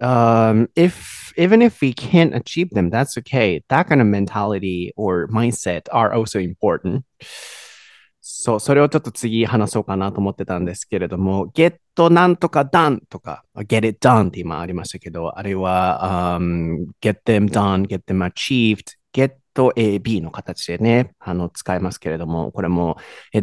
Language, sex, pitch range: Japanese, male, 95-140 Hz